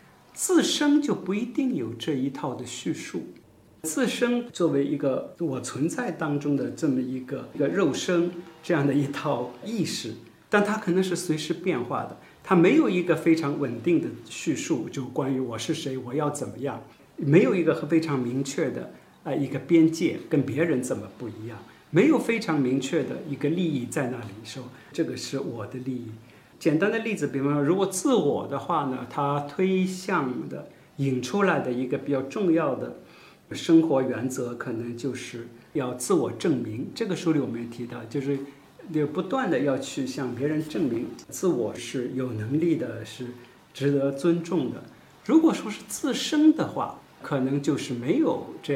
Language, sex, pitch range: Chinese, male, 130-175 Hz